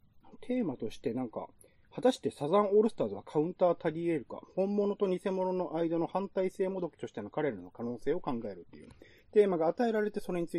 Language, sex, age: Japanese, male, 40-59